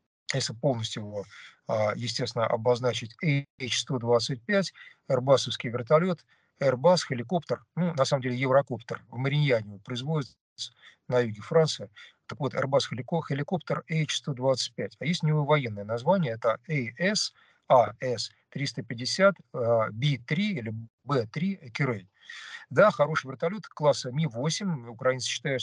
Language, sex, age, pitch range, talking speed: Russian, male, 50-69, 120-155 Hz, 110 wpm